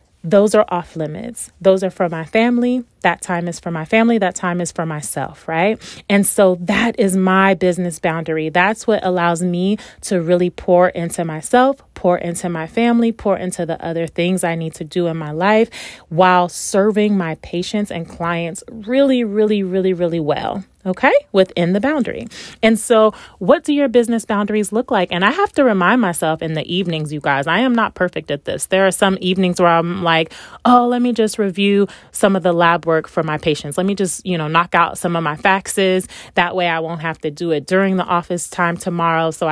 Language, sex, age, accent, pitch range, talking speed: English, female, 30-49, American, 170-205 Hz, 215 wpm